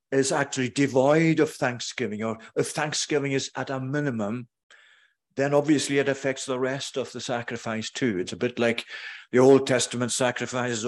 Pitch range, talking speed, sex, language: 115-135 Hz, 165 wpm, male, English